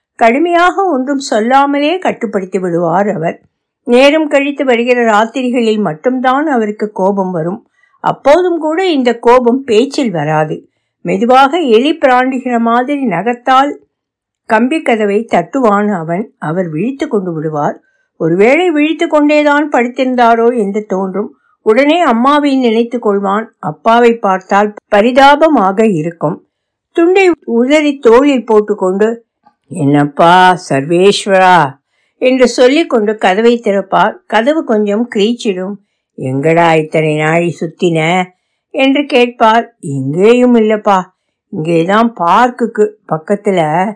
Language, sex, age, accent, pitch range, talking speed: Tamil, female, 60-79, native, 180-255 Hz, 100 wpm